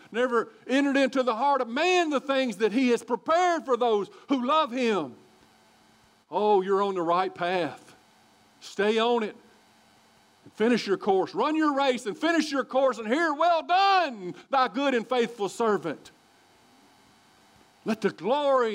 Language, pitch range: English, 175-275 Hz